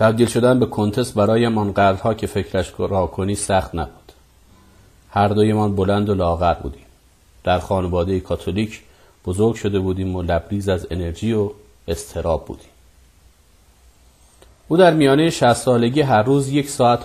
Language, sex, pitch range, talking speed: Persian, male, 85-105 Hz, 150 wpm